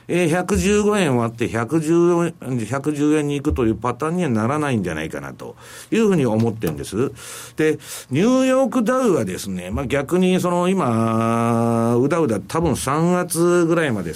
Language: Japanese